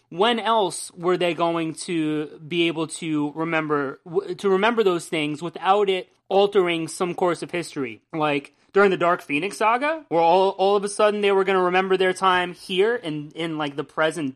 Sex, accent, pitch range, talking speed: male, American, 155-200 Hz, 190 wpm